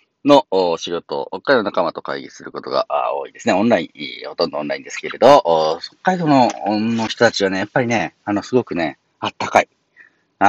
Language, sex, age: Japanese, male, 40-59